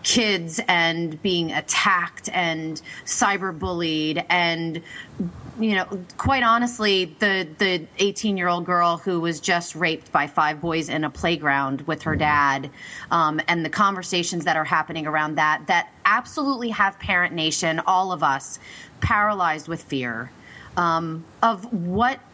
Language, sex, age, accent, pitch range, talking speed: English, female, 30-49, American, 165-220 Hz, 145 wpm